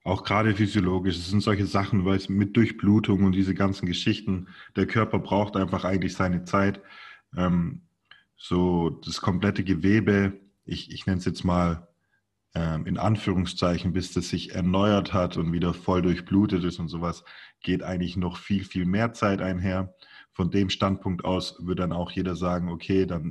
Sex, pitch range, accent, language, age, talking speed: male, 90-100 Hz, German, German, 30-49, 170 wpm